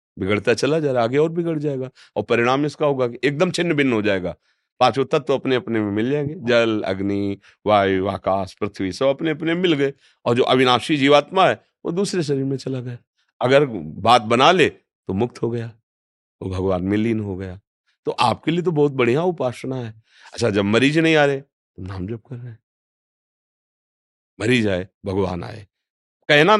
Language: Hindi